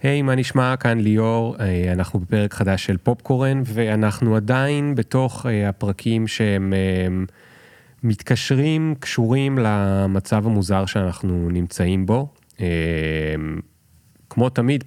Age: 30-49